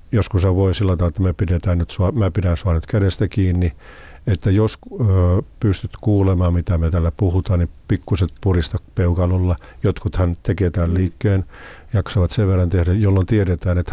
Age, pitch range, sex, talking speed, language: 50-69, 85-100 Hz, male, 155 wpm, Finnish